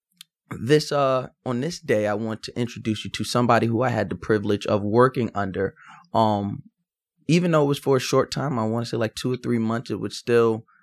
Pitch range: 105-120 Hz